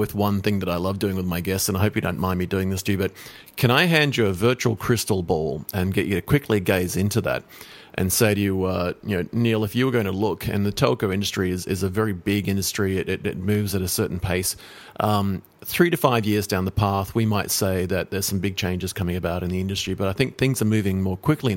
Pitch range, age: 95-110 Hz, 40-59